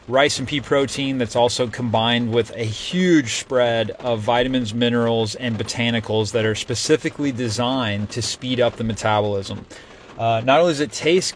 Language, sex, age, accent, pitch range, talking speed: English, male, 30-49, American, 115-130 Hz, 165 wpm